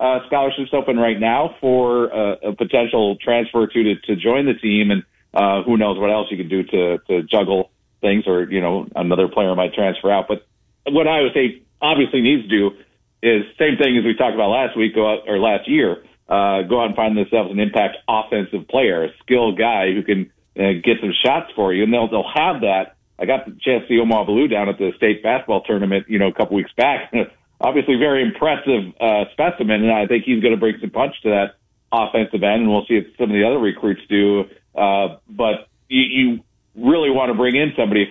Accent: American